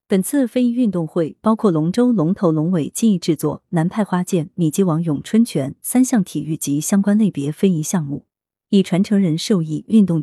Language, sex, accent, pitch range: Chinese, female, native, 155-210 Hz